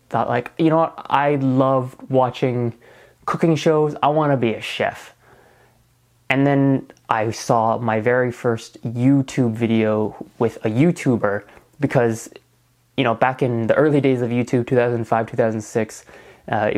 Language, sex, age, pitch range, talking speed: English, male, 20-39, 110-130 Hz, 145 wpm